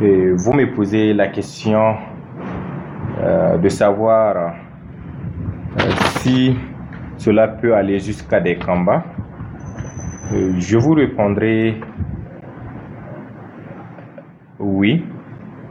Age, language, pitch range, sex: 20-39, French, 90-110 Hz, male